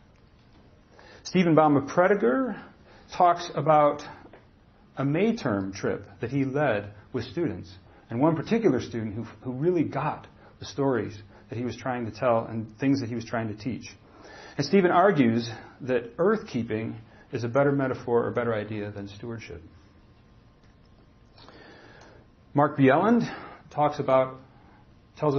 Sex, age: male, 40-59